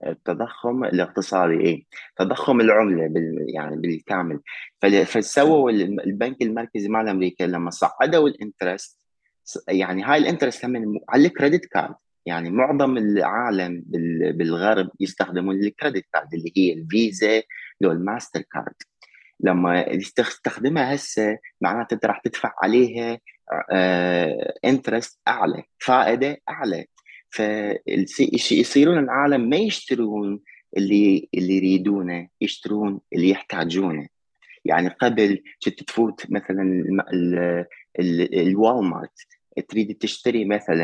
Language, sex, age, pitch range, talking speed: Arabic, male, 30-49, 90-130 Hz, 105 wpm